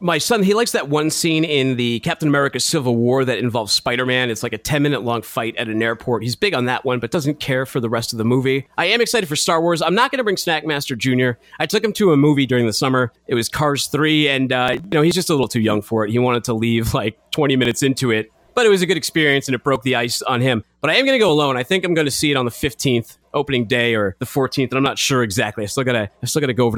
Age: 30-49